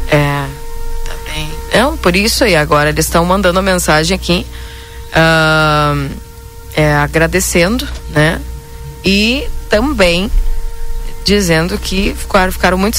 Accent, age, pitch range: Brazilian, 20-39, 145-205 Hz